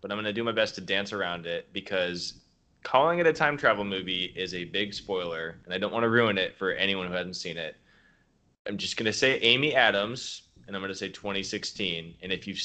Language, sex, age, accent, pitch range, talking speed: English, male, 20-39, American, 90-110 Hz, 240 wpm